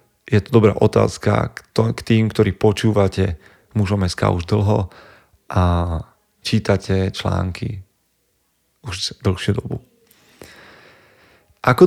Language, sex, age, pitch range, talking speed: Slovak, male, 40-59, 100-120 Hz, 90 wpm